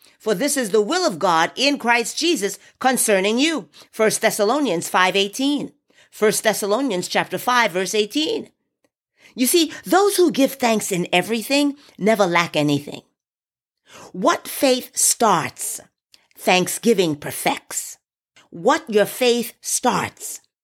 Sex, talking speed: female, 120 wpm